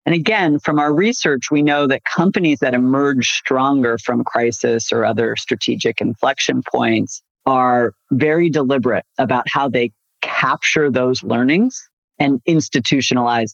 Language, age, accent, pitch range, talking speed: English, 40-59, American, 120-150 Hz, 135 wpm